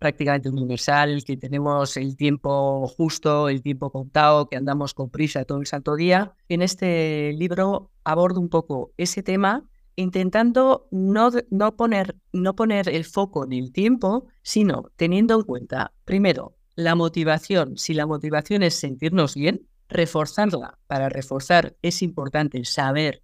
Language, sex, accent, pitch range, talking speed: Spanish, female, Spanish, 135-185 Hz, 140 wpm